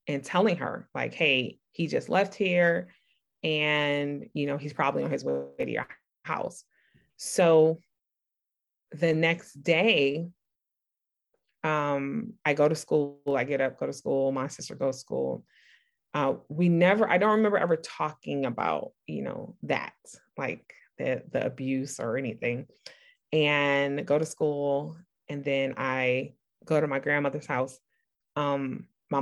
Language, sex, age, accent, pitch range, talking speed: English, female, 20-39, American, 140-175 Hz, 150 wpm